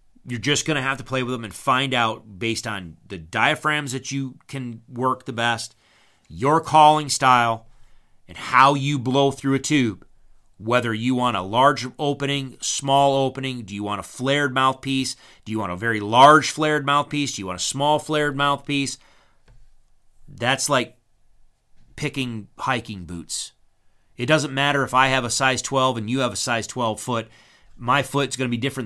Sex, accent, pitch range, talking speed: male, American, 110-135 Hz, 180 wpm